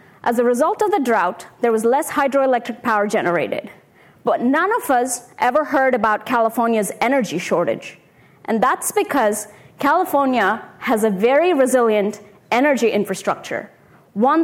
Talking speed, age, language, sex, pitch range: 135 wpm, 20-39, English, female, 215-285 Hz